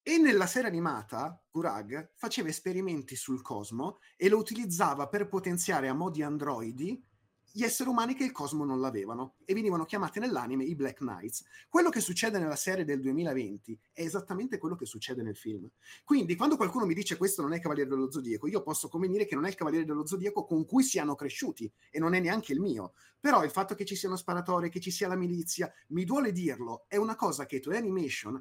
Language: Italian